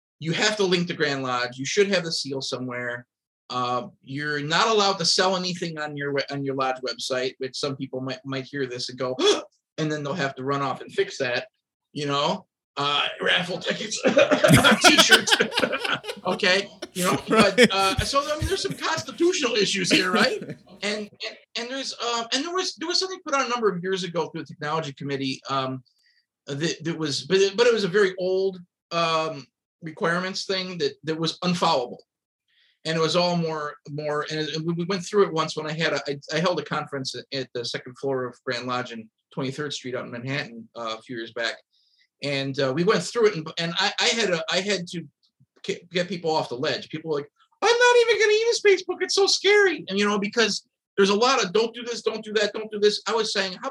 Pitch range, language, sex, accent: 140-210 Hz, English, male, American